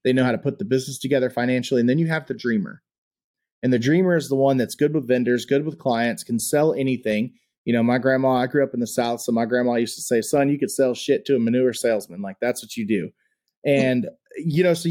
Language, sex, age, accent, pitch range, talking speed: English, male, 30-49, American, 120-145 Hz, 260 wpm